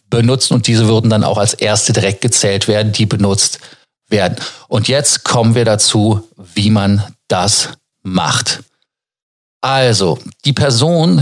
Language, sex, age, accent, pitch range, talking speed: German, male, 40-59, German, 110-130 Hz, 140 wpm